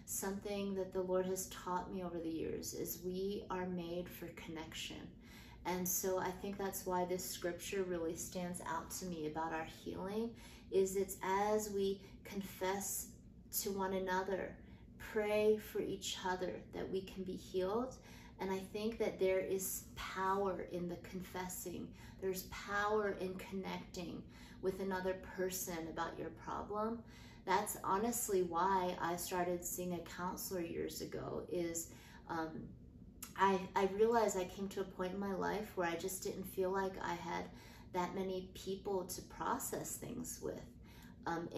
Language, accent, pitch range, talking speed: English, American, 175-195 Hz, 155 wpm